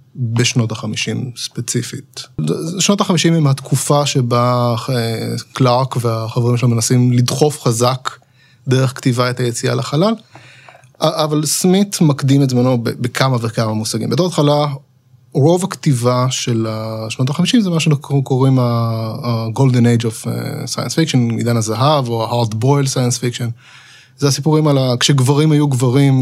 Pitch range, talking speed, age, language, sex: 120-145 Hz, 125 wpm, 20-39, Hebrew, male